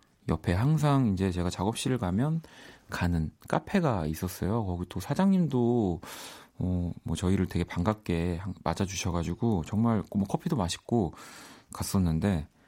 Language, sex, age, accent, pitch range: Korean, male, 40-59, native, 85-115 Hz